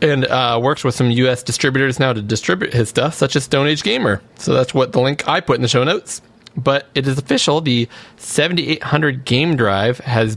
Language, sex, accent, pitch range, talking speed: English, male, American, 110-135 Hz, 215 wpm